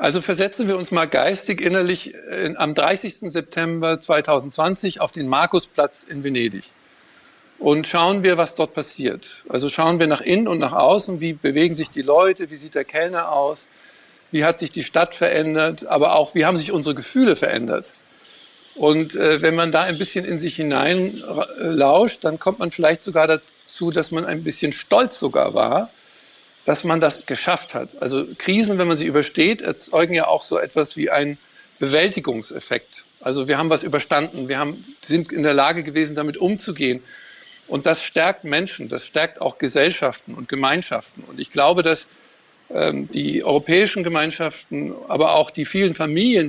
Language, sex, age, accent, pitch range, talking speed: German, male, 50-69, German, 150-180 Hz, 170 wpm